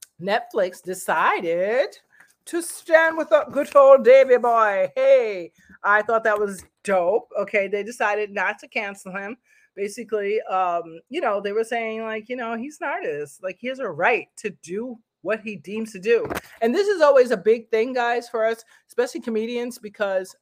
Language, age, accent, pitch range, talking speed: English, 40-59, American, 180-240 Hz, 180 wpm